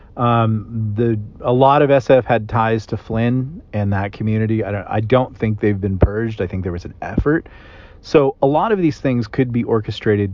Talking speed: 210 wpm